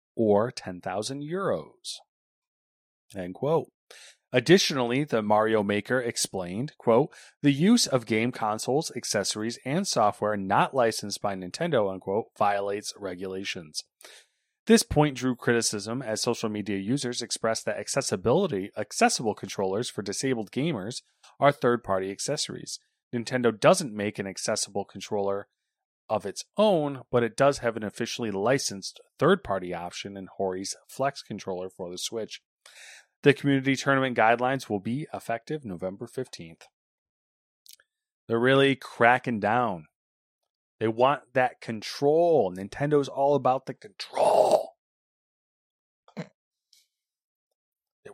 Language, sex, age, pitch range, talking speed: English, male, 30-49, 100-135 Hz, 115 wpm